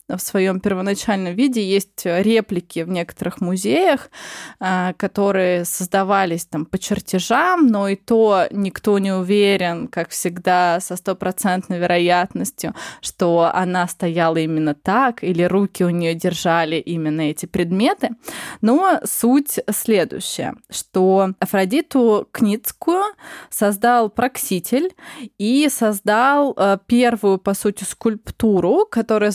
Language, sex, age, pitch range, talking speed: Russian, female, 20-39, 185-245 Hz, 110 wpm